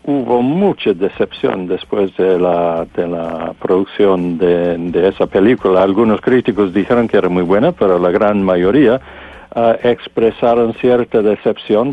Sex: male